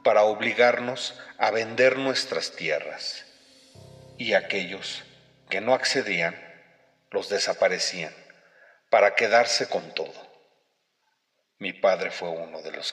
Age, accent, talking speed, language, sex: 40-59, Mexican, 105 wpm, Spanish, male